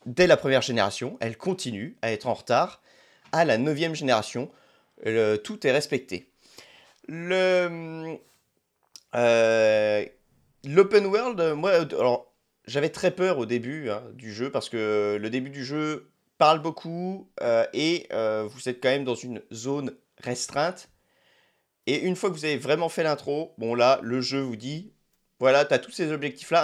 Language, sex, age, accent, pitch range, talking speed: French, male, 30-49, French, 115-160 Hz, 160 wpm